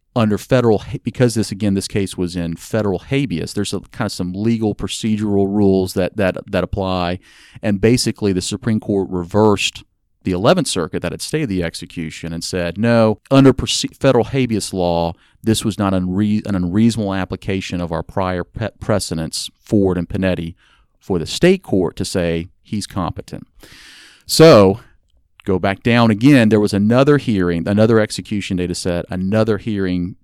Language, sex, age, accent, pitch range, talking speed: English, male, 40-59, American, 90-110 Hz, 165 wpm